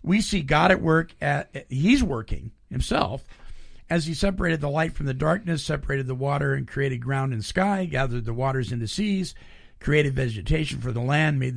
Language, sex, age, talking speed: English, male, 50-69, 180 wpm